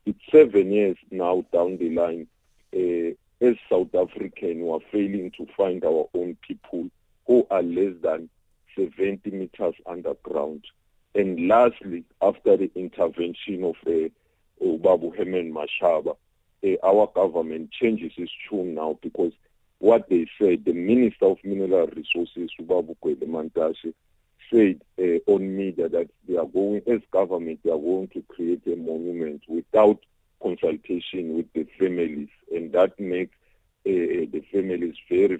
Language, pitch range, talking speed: English, 85-105 Hz, 140 wpm